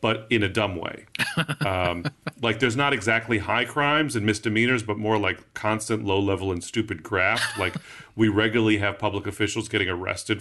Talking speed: 180 wpm